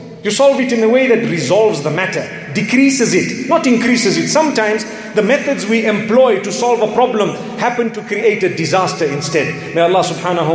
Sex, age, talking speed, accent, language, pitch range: male, 40-59, 190 wpm, South African, English, 195-240 Hz